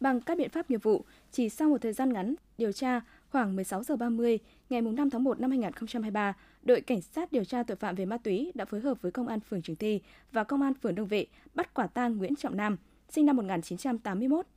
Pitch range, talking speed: 205-270 Hz, 230 wpm